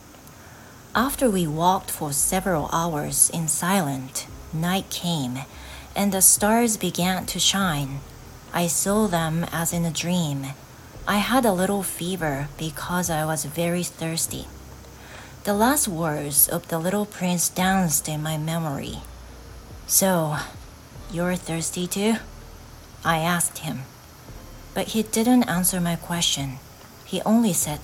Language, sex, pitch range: Japanese, female, 140-190 Hz